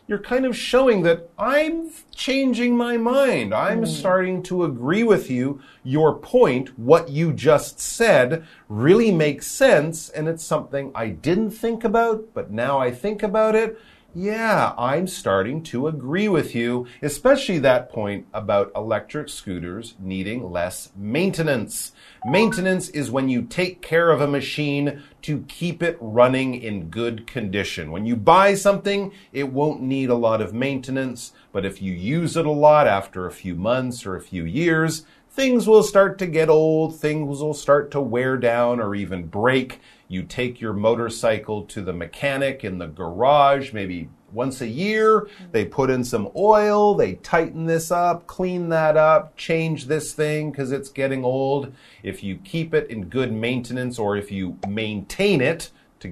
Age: 40-59